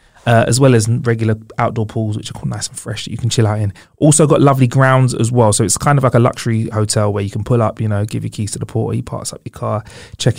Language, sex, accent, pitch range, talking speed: English, male, British, 115-150 Hz, 295 wpm